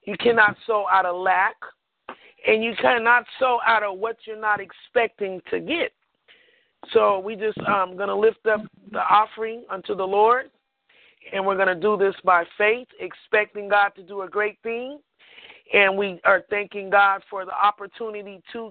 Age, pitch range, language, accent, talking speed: 30-49, 190-215 Hz, English, American, 175 wpm